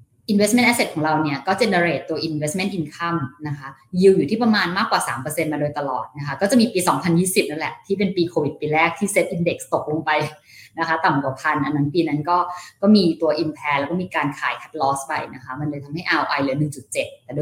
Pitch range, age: 135-185 Hz, 20-39